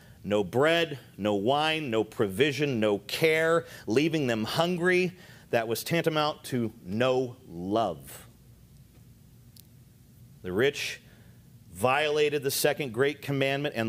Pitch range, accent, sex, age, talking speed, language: 115-140 Hz, American, male, 40-59, 110 wpm, English